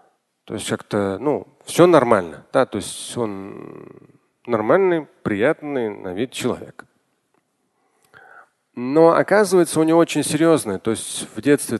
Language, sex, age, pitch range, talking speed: Russian, male, 40-59, 110-155 Hz, 125 wpm